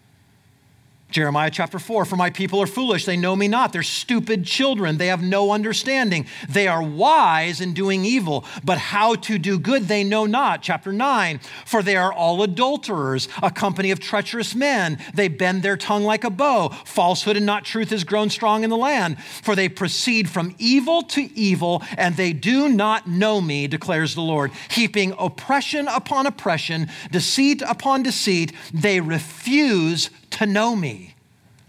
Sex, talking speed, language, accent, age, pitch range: male, 170 wpm, English, American, 40-59, 155-220 Hz